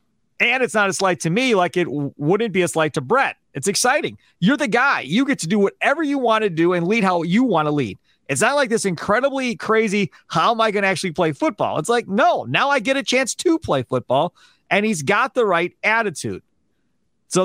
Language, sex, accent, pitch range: English, male, American, 155-230 Hz